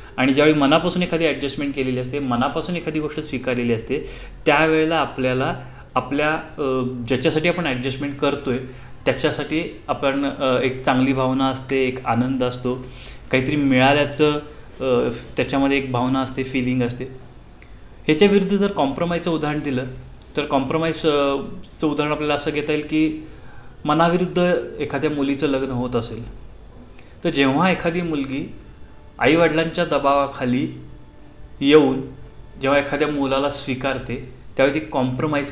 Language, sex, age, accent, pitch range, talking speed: Marathi, male, 30-49, native, 125-150 Hz, 115 wpm